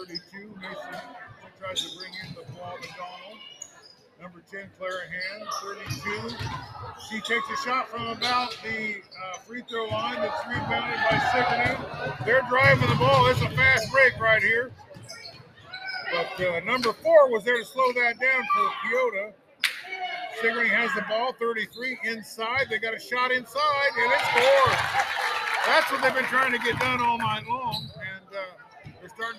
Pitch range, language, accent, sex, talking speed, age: 195-260 Hz, English, American, male, 160 wpm, 50-69